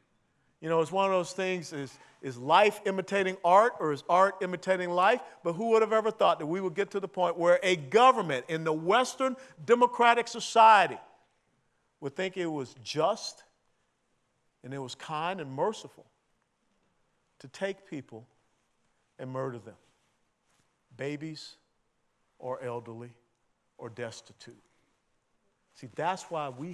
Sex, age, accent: male, 50-69, American